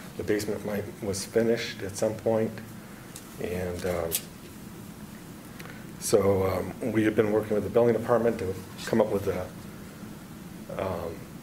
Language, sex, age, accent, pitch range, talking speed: English, male, 40-59, American, 100-115 Hz, 130 wpm